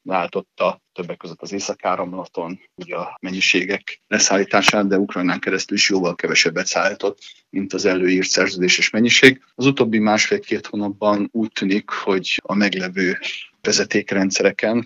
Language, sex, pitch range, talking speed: Hungarian, male, 95-105 Hz, 125 wpm